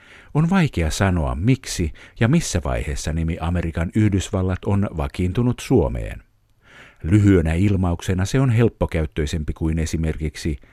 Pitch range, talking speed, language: 80-105 Hz, 110 wpm, Finnish